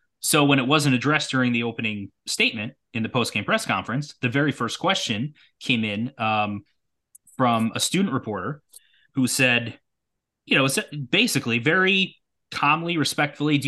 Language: English